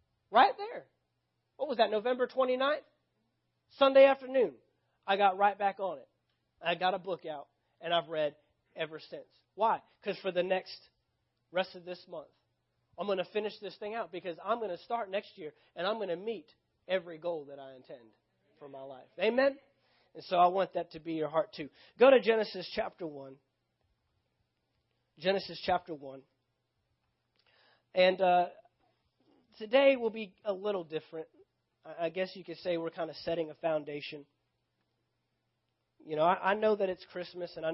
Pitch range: 160-195 Hz